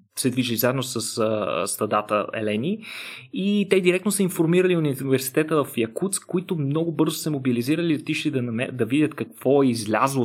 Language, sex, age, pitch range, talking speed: Bulgarian, male, 30-49, 120-160 Hz, 165 wpm